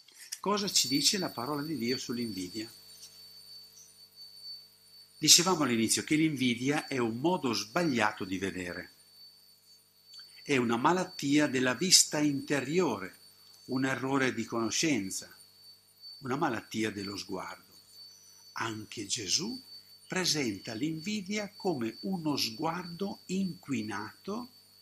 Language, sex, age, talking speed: Italian, male, 60-79, 95 wpm